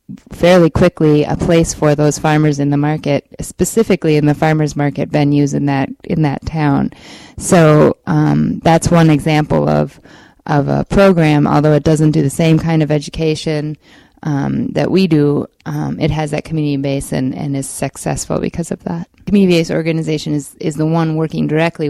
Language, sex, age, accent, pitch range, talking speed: English, female, 20-39, American, 140-160 Hz, 180 wpm